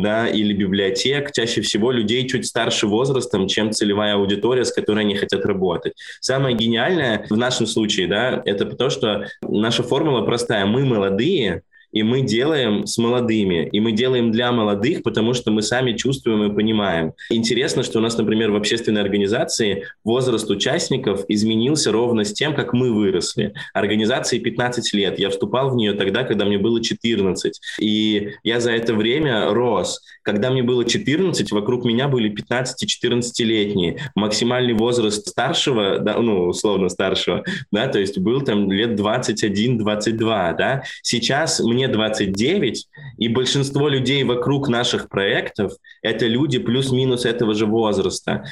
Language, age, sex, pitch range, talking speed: Russian, 20-39, male, 105-125 Hz, 155 wpm